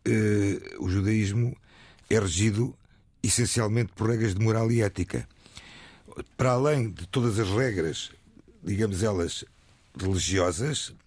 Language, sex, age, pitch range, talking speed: Portuguese, male, 50-69, 95-125 Hz, 115 wpm